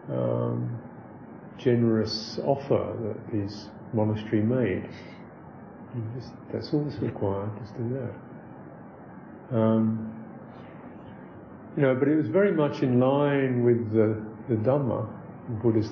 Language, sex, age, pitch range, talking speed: English, male, 50-69, 110-125 Hz, 120 wpm